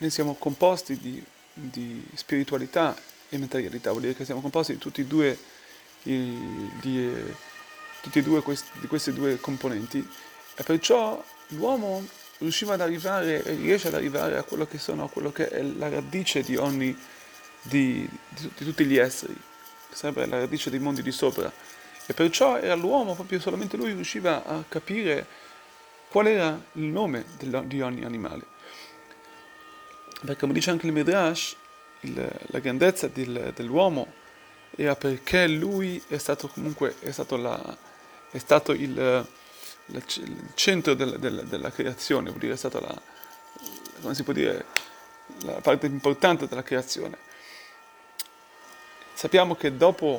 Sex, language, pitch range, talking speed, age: male, Italian, 135-175 Hz, 145 wpm, 30-49